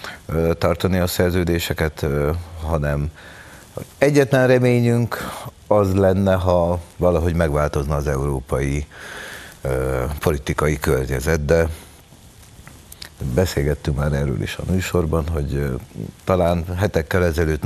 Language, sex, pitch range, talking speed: Hungarian, male, 75-90 Hz, 90 wpm